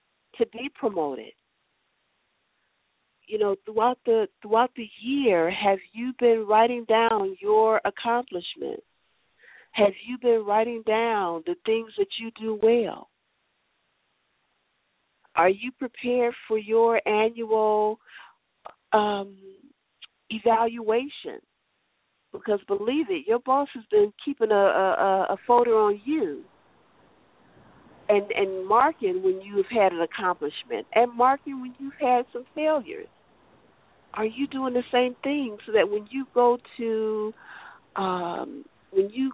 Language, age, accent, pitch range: English, 50-69, American, 215-270 Hz